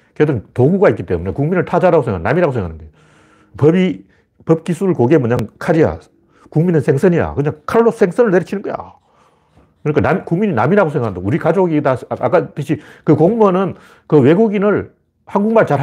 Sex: male